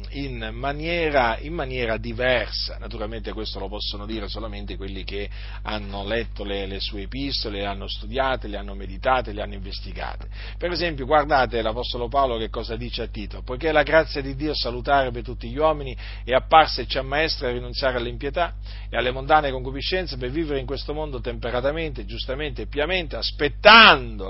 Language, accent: Italian, native